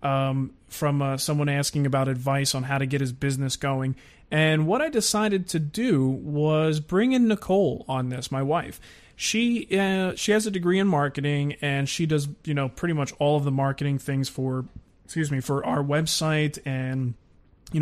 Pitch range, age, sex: 135-165 Hz, 20-39, male